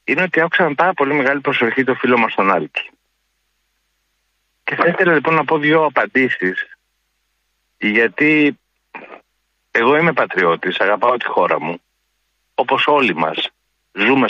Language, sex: Greek, male